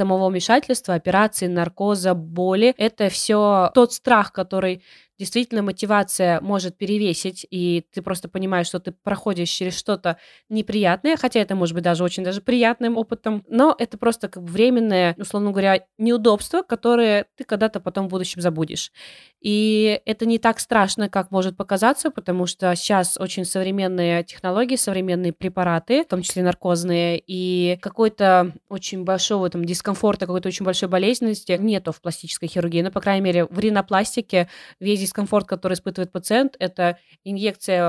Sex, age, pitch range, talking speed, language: female, 20-39, 180-210 Hz, 150 wpm, Russian